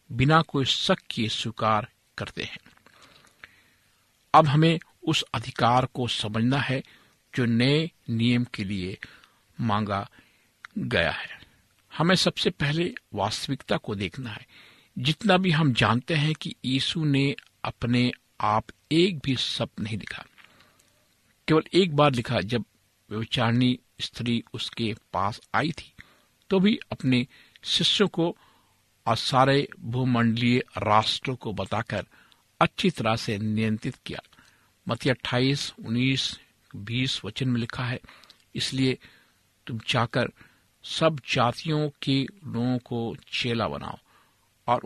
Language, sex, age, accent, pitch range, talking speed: Hindi, male, 50-69, native, 110-140 Hz, 120 wpm